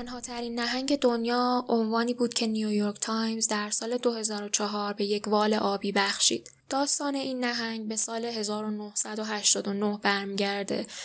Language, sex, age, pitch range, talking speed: Persian, female, 10-29, 210-250 Hz, 130 wpm